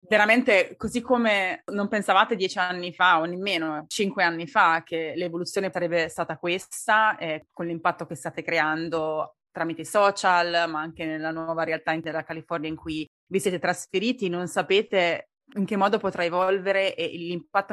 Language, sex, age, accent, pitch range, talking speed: Italian, female, 20-39, native, 165-200 Hz, 165 wpm